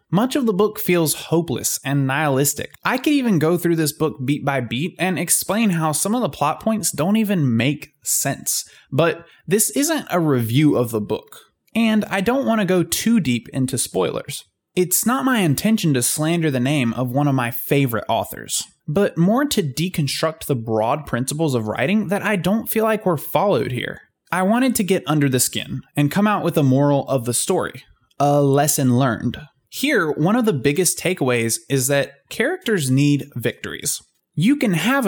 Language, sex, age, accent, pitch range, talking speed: English, male, 20-39, American, 135-200 Hz, 190 wpm